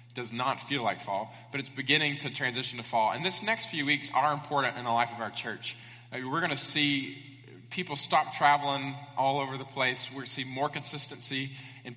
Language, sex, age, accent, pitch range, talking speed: English, male, 20-39, American, 120-145 Hz, 210 wpm